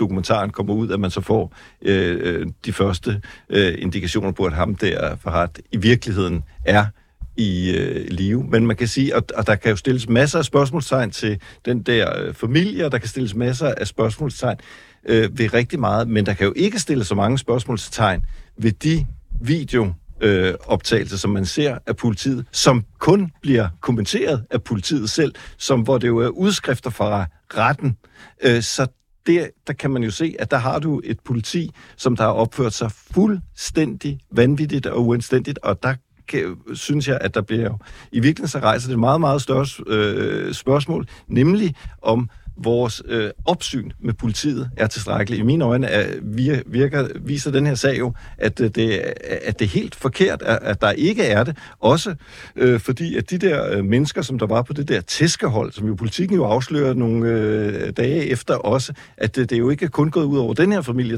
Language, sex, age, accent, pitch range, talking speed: Danish, male, 60-79, native, 110-140 Hz, 195 wpm